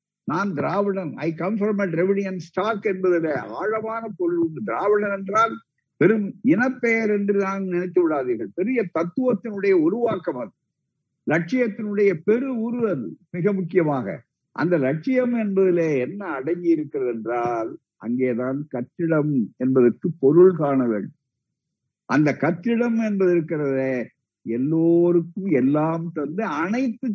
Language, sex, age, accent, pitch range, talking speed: Tamil, male, 50-69, native, 145-210 Hz, 75 wpm